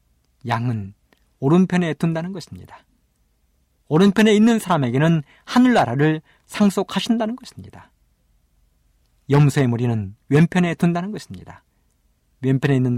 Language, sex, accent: Korean, male, native